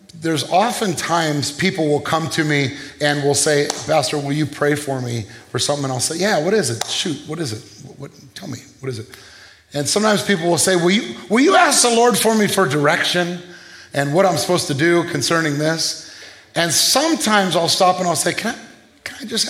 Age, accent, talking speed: 30-49, American, 210 wpm